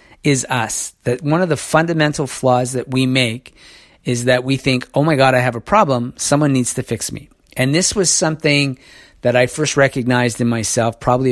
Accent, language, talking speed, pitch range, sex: American, English, 200 wpm, 115-145 Hz, male